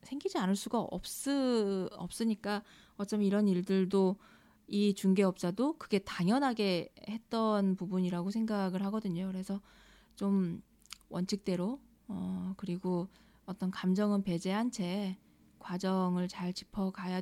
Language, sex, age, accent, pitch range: Korean, female, 20-39, native, 185-220 Hz